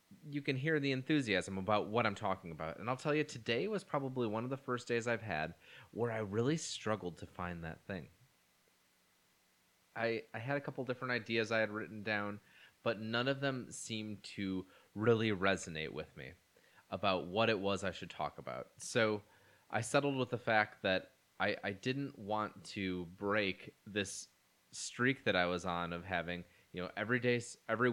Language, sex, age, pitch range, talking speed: English, male, 20-39, 95-120 Hz, 185 wpm